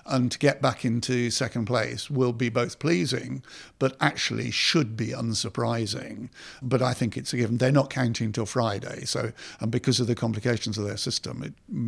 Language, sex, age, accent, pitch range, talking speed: English, male, 60-79, British, 115-140 Hz, 190 wpm